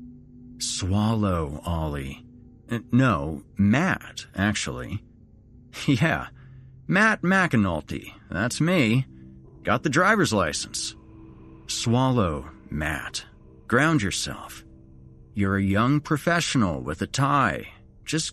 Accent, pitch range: American, 85-120 Hz